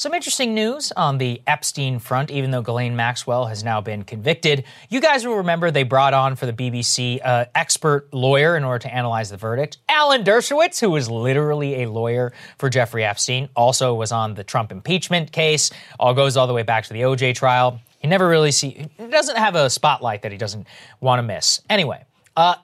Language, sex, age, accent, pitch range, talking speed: English, male, 30-49, American, 125-185 Hz, 205 wpm